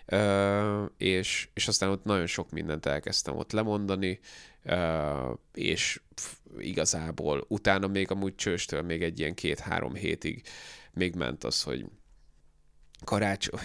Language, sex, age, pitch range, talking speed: Hungarian, male, 20-39, 85-100 Hz, 125 wpm